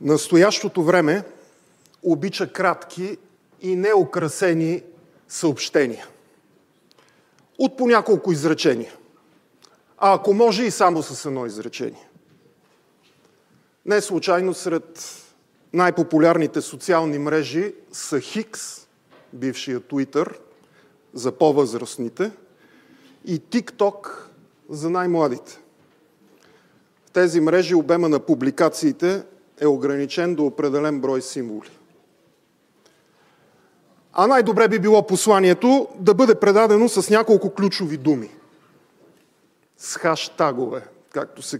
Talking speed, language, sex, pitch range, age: 90 wpm, English, male, 150-205 Hz, 40-59